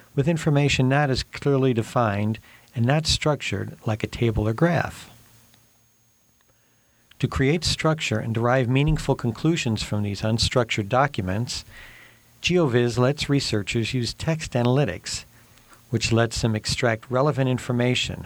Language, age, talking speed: English, 50-69, 120 wpm